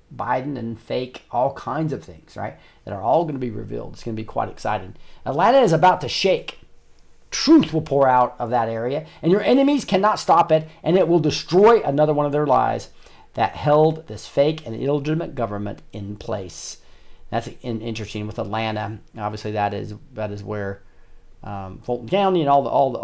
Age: 40-59